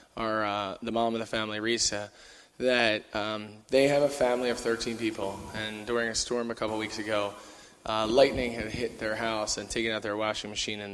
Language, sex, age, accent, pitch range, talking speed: English, male, 20-39, American, 105-115 Hz, 205 wpm